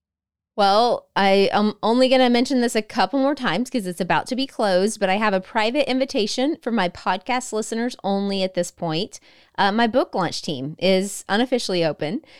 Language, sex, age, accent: English, female, 30-49, American